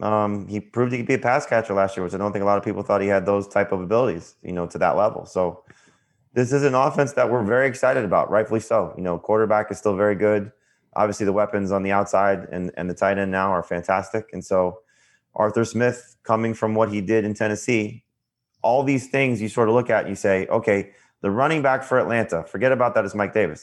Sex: male